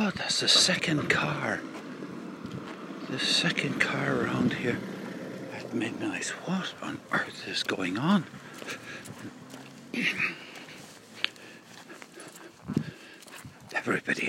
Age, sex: 60-79, male